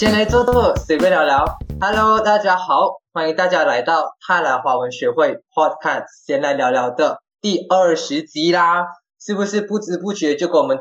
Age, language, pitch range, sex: 20-39, Chinese, 150-245 Hz, male